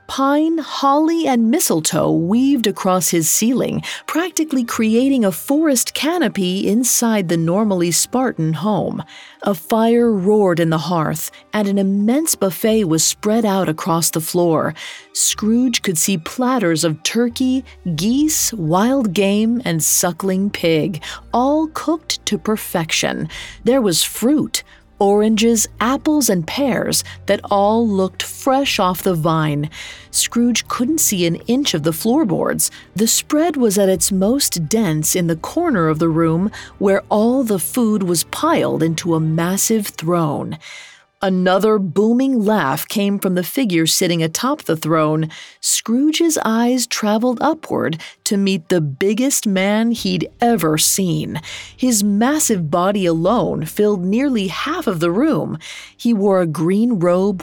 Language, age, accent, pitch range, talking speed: English, 40-59, American, 175-240 Hz, 140 wpm